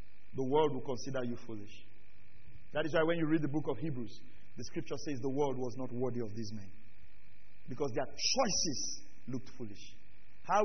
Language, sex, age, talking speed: English, male, 40-59, 185 wpm